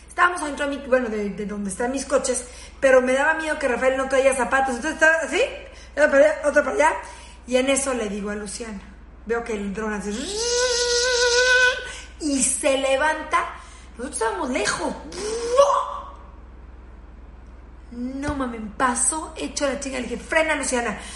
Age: 40-59